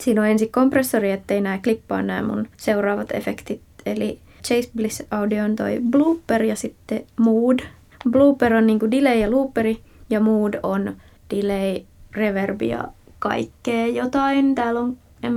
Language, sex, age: Finnish, female, 20-39